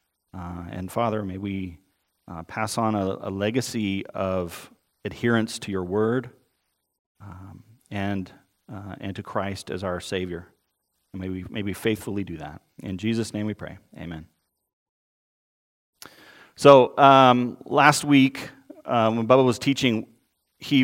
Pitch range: 100-130 Hz